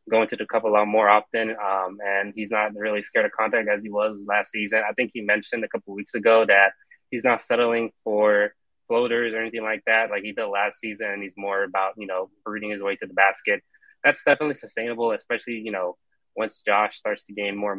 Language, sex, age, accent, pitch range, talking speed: English, male, 20-39, American, 100-115 Hz, 235 wpm